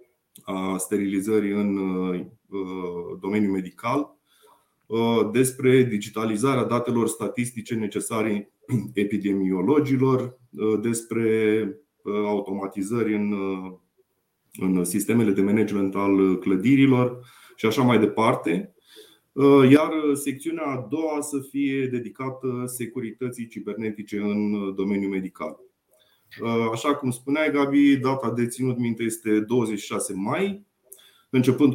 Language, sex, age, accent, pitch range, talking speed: Romanian, male, 20-39, native, 105-130 Hz, 90 wpm